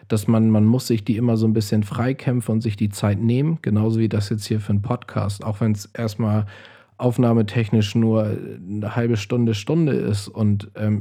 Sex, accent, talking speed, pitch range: male, German, 200 wpm, 105-120 Hz